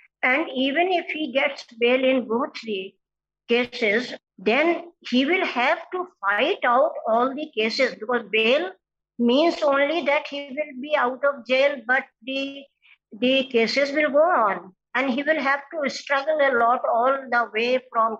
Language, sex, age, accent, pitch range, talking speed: English, female, 50-69, Indian, 235-300 Hz, 165 wpm